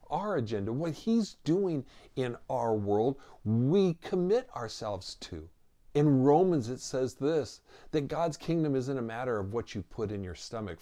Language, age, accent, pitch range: English, 50-69, American, 115-155 Hz